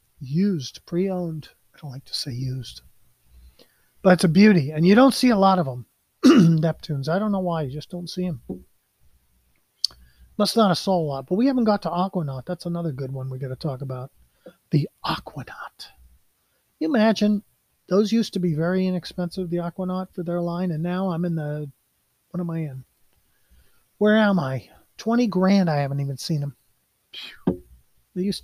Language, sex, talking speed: English, male, 180 wpm